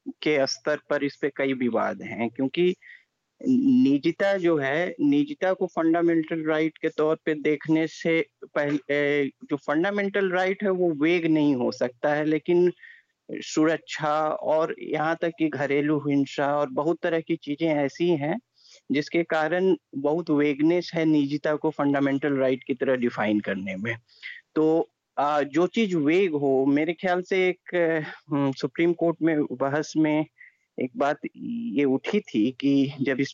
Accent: native